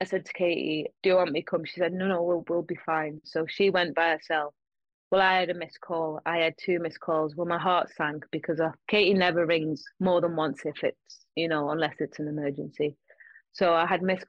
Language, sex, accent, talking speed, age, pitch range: English, female, British, 245 wpm, 20-39, 160-265 Hz